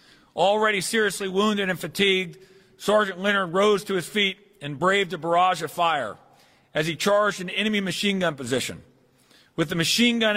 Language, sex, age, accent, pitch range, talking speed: English, male, 40-59, American, 160-190 Hz, 170 wpm